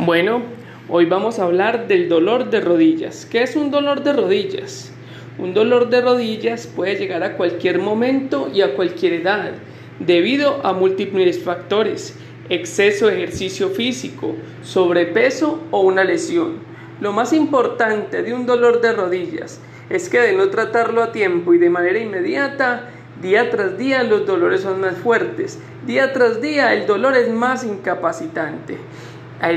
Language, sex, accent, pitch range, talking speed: Spanish, male, Colombian, 180-280 Hz, 155 wpm